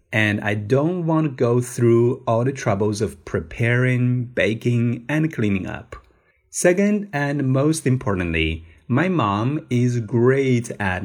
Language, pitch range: Chinese, 100-140 Hz